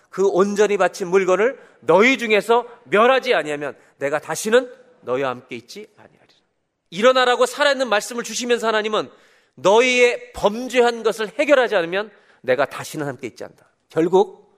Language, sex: Korean, male